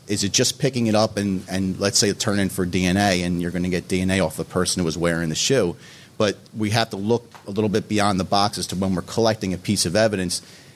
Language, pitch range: English, 90-110 Hz